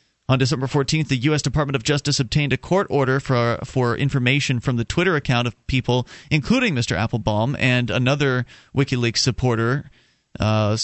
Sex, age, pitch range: male, 30-49, 115-140 Hz